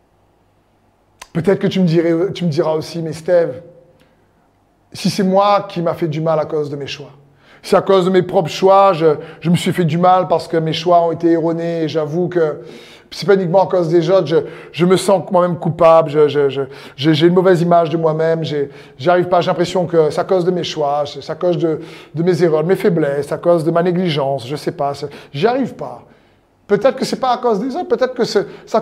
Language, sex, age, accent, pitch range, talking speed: French, male, 30-49, French, 155-190 Hz, 240 wpm